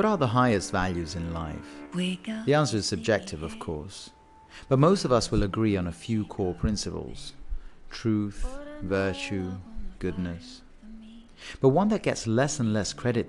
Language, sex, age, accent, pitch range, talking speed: English, male, 40-59, British, 95-125 Hz, 160 wpm